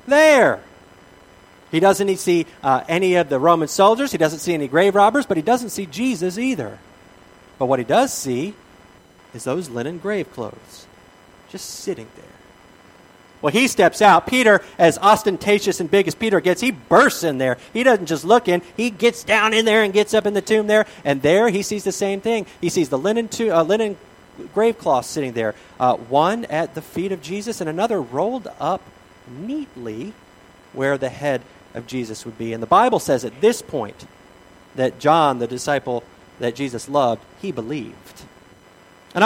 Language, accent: English, American